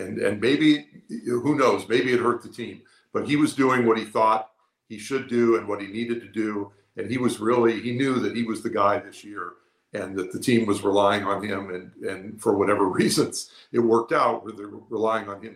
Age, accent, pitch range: 50-69, American, 100-120 Hz